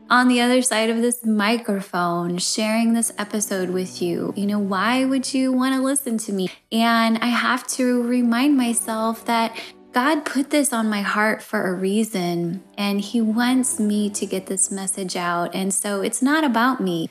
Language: English